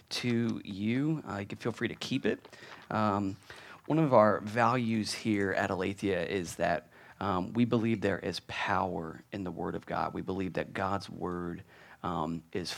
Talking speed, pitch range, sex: 180 wpm, 90-115 Hz, male